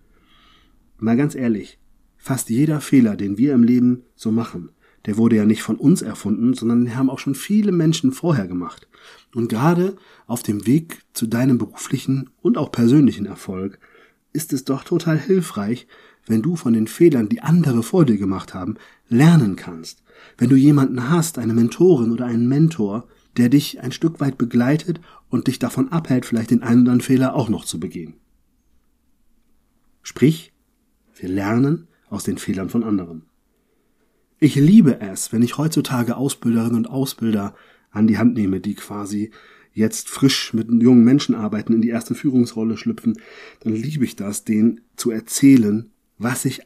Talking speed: 165 wpm